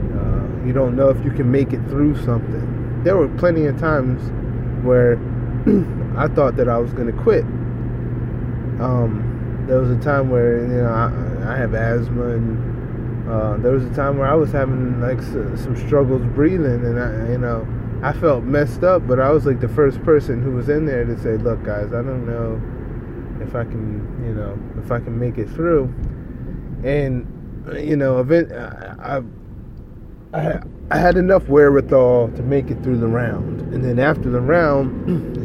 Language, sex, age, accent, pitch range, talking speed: English, male, 20-39, American, 120-135 Hz, 185 wpm